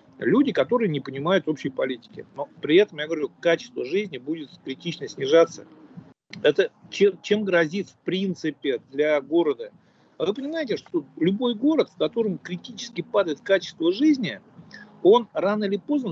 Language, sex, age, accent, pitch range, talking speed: Russian, male, 50-69, native, 170-280 Hz, 140 wpm